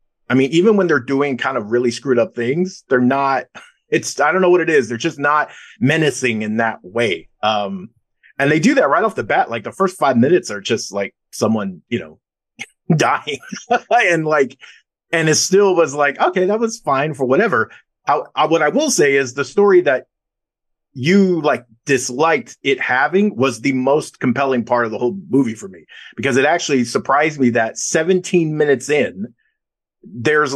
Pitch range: 130-185 Hz